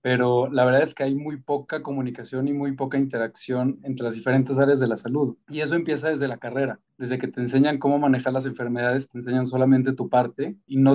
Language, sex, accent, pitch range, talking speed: Spanish, male, Mexican, 125-140 Hz, 225 wpm